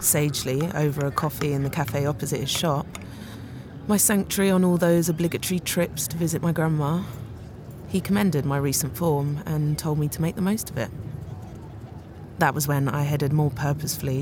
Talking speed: 175 wpm